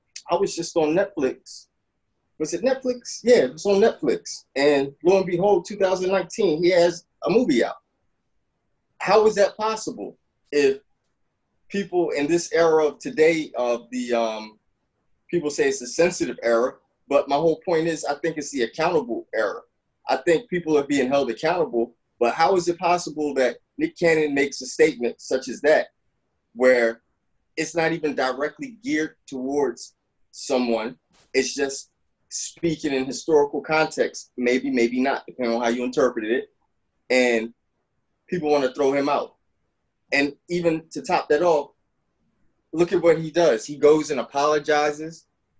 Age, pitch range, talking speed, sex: 20-39, 130-175 Hz, 160 wpm, male